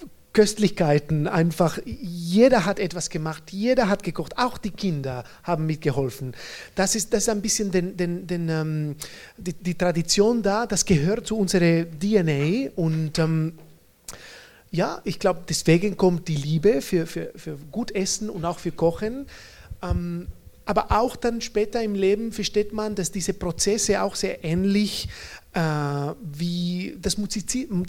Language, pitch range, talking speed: German, 165-210 Hz, 150 wpm